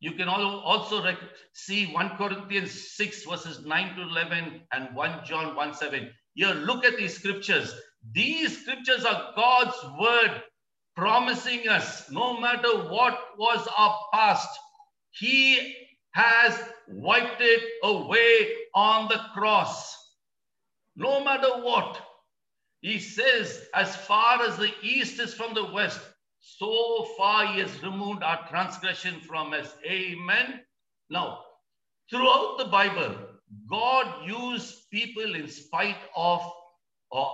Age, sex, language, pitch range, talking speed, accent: 60-79, male, English, 170-245 Hz, 120 wpm, Indian